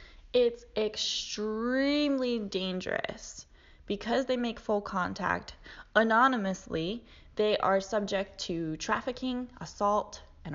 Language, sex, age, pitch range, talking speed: English, female, 10-29, 170-235 Hz, 90 wpm